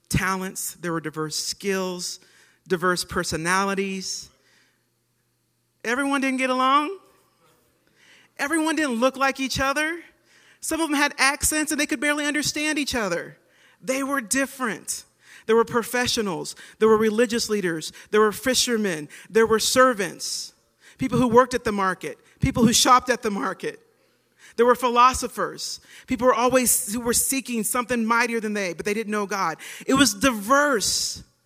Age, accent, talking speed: 40-59, American, 150 wpm